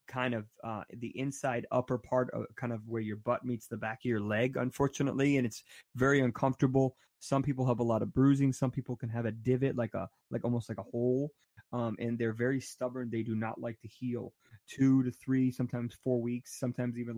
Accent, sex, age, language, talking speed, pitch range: American, male, 20-39, English, 220 wpm, 110-125 Hz